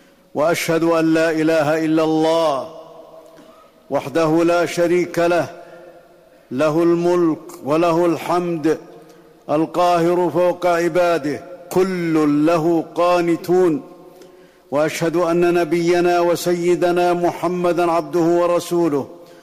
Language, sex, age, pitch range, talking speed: Arabic, male, 50-69, 165-175 Hz, 85 wpm